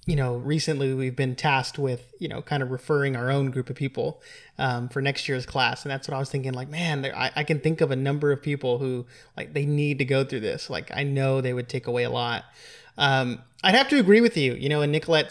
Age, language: 20-39, English